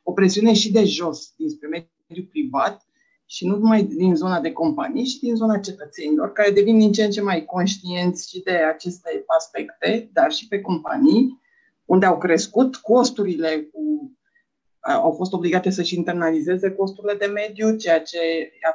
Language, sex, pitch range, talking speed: Romanian, female, 185-245 Hz, 165 wpm